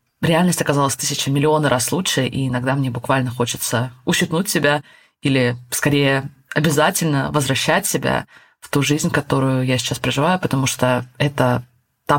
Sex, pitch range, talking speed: female, 130-170 Hz, 145 wpm